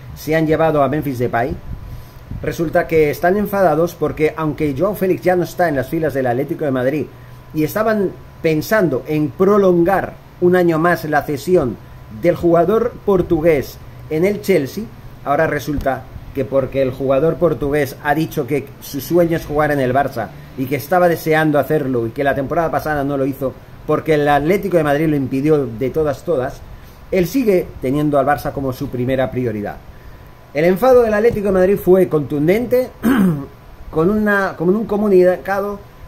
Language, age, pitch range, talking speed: Spanish, 40-59, 135-180 Hz, 170 wpm